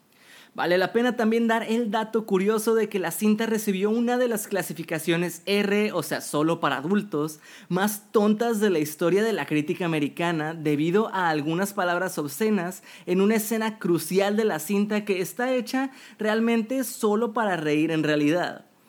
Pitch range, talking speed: 160-220 Hz, 170 wpm